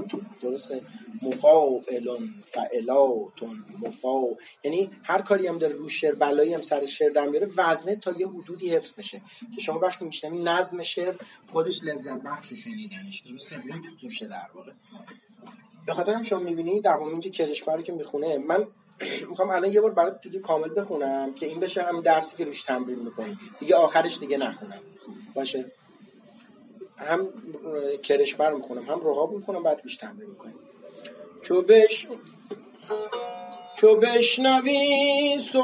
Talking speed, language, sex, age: 145 wpm, Persian, male, 30-49